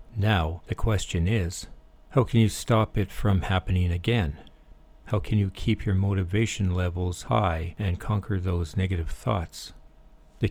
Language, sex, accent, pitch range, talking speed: English, male, American, 90-105 Hz, 150 wpm